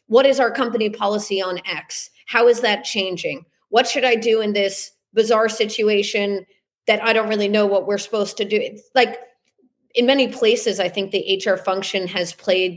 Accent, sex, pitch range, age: American, female, 195-235 Hz, 30-49